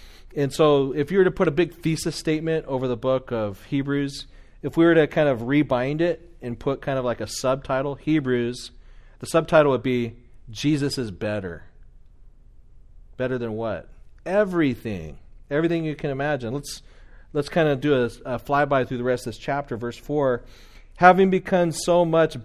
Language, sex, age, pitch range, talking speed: English, male, 40-59, 120-155 Hz, 180 wpm